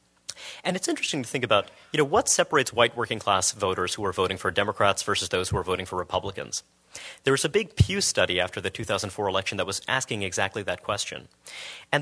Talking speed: 215 wpm